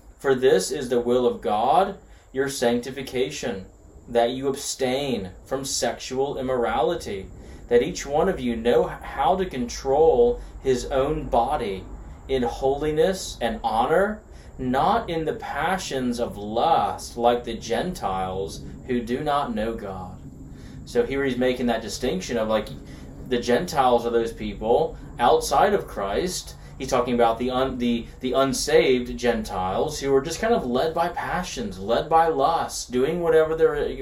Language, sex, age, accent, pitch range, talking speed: English, male, 30-49, American, 115-150 Hz, 150 wpm